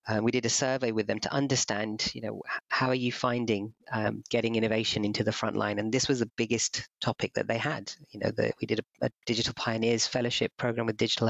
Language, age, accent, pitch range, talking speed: English, 30-49, British, 110-120 Hz, 230 wpm